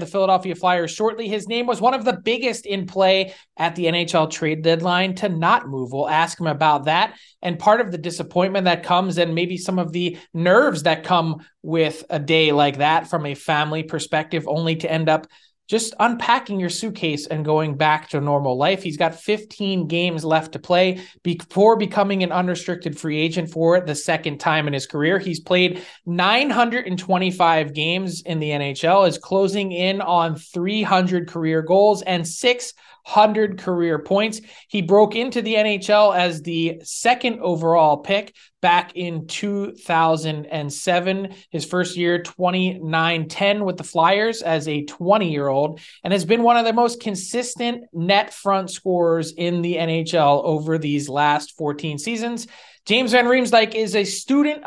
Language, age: English, 20-39